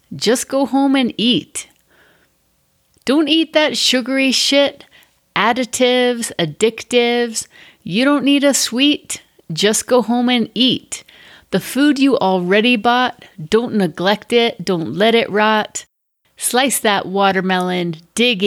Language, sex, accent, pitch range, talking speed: English, female, American, 185-235 Hz, 125 wpm